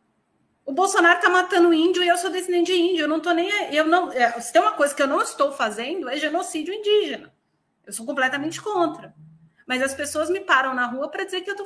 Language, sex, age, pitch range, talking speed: Portuguese, female, 30-49, 245-345 Hz, 225 wpm